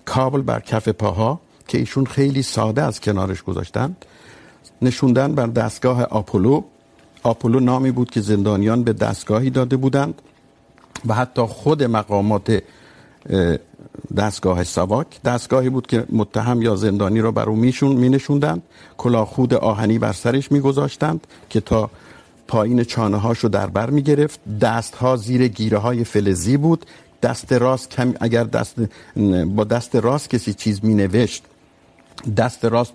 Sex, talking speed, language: male, 135 wpm, Urdu